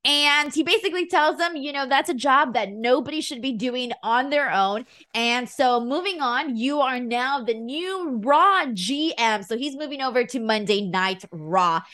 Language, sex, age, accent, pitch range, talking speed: English, female, 20-39, American, 215-290 Hz, 185 wpm